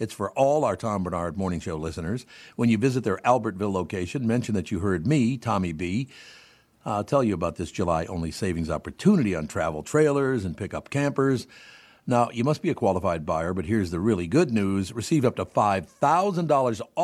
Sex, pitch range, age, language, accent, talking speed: male, 95-130 Hz, 60-79, English, American, 185 wpm